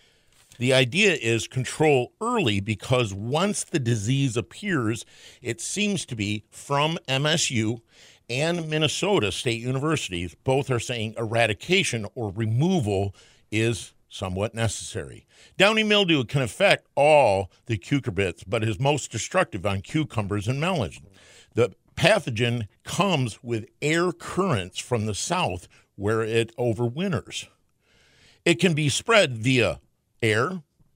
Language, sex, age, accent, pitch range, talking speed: English, male, 50-69, American, 105-145 Hz, 120 wpm